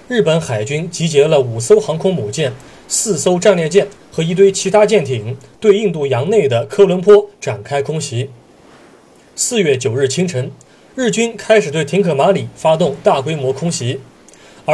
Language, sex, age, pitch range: Chinese, male, 30-49, 140-205 Hz